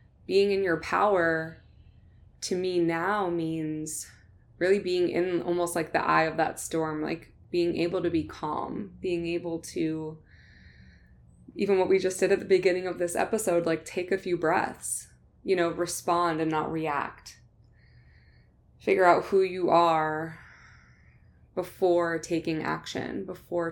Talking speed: 145 wpm